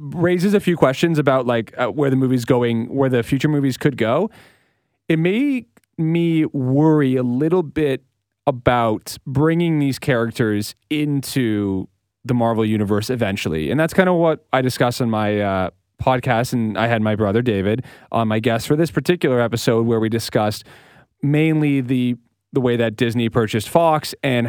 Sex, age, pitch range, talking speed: male, 30-49, 115-150 Hz, 170 wpm